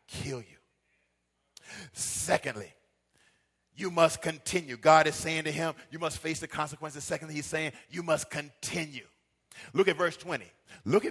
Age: 40-59